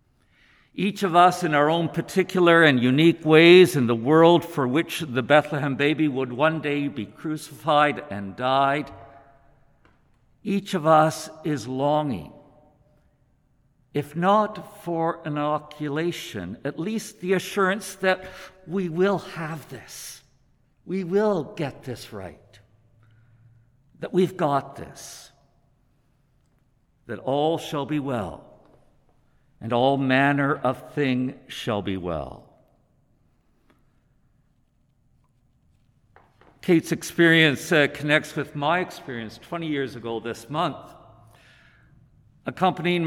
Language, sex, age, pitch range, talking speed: English, male, 60-79, 125-165 Hz, 110 wpm